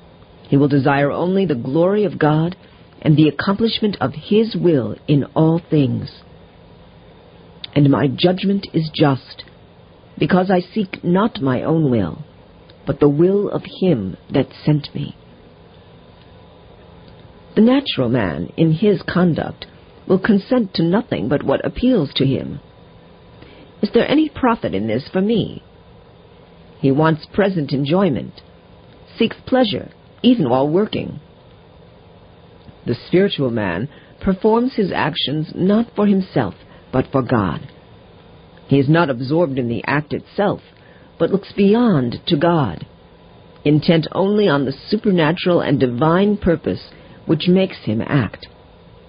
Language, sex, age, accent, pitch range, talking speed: English, female, 50-69, American, 135-195 Hz, 130 wpm